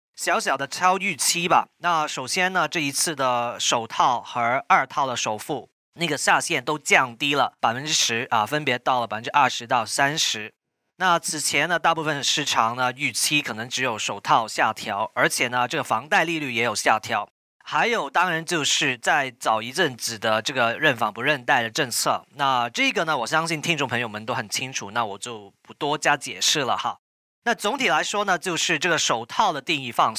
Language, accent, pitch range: Chinese, native, 125-175 Hz